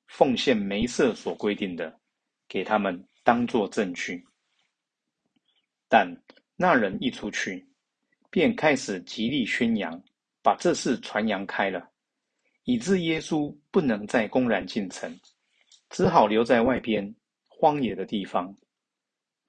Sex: male